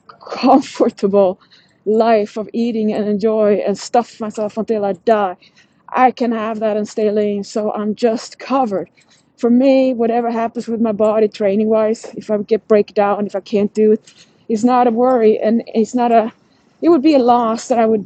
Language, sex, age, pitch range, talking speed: English, female, 20-39, 215-255 Hz, 195 wpm